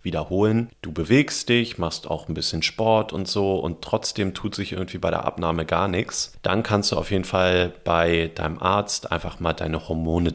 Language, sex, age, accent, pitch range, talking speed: German, male, 40-59, German, 80-105 Hz, 195 wpm